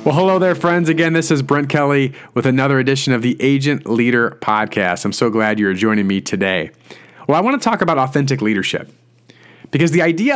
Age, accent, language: 40-59, American, English